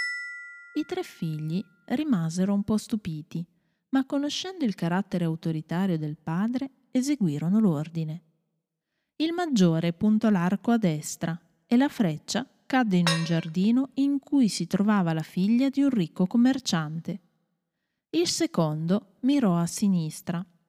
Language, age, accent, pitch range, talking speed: Italian, 30-49, native, 170-240 Hz, 130 wpm